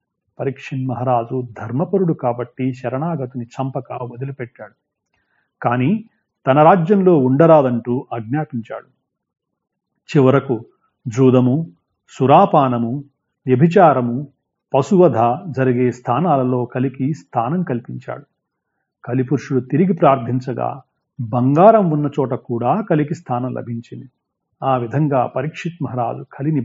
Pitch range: 125-155 Hz